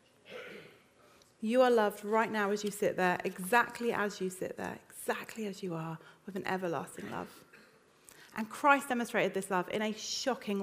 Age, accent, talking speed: 30-49, British, 170 wpm